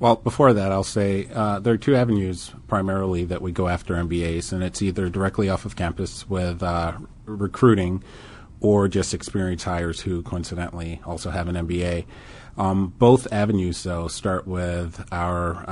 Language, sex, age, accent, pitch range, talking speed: English, male, 30-49, American, 85-105 Hz, 165 wpm